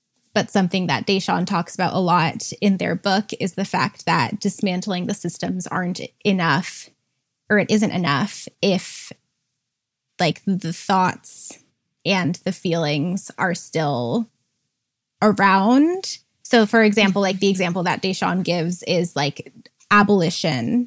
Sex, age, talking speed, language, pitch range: female, 20-39, 130 wpm, English, 170-210 Hz